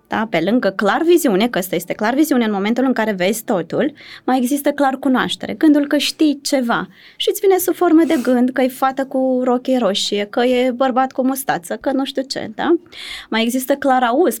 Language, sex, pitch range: Romanian, female, 215-295 Hz